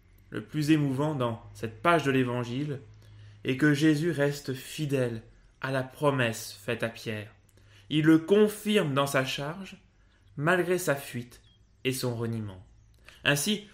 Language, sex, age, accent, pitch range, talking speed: French, male, 20-39, French, 115-170 Hz, 140 wpm